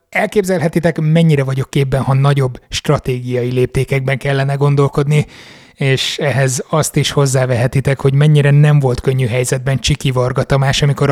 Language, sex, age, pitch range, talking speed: Hungarian, male, 30-49, 130-150 Hz, 125 wpm